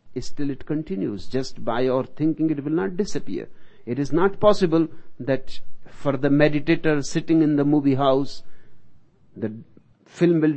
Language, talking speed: Hindi, 155 wpm